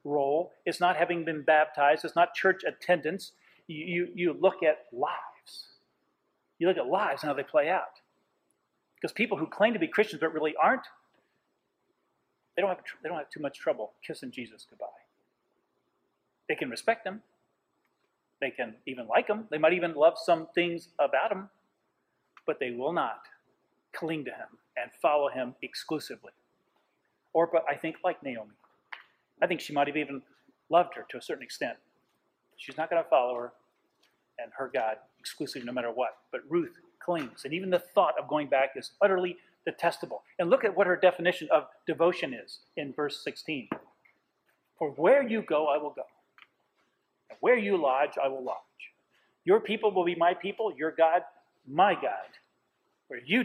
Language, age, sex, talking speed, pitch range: English, 40-59, male, 170 wpm, 150-190 Hz